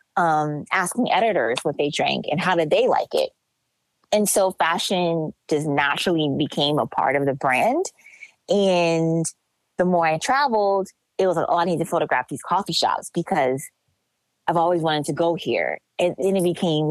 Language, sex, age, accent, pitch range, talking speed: English, female, 20-39, American, 160-200 Hz, 175 wpm